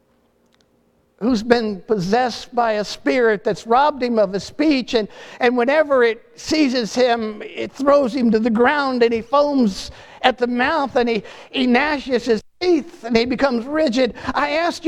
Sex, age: male, 50-69